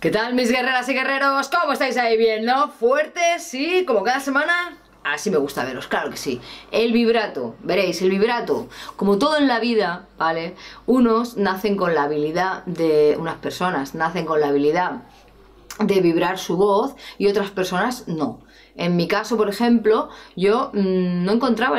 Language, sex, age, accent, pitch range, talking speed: Spanish, female, 20-39, Spanish, 165-230 Hz, 170 wpm